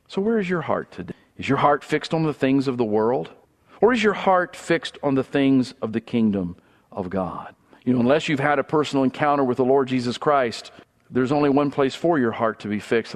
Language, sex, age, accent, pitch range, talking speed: English, male, 50-69, American, 125-170 Hz, 235 wpm